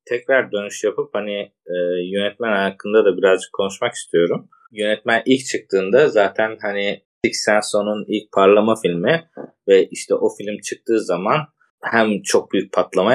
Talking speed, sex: 140 wpm, male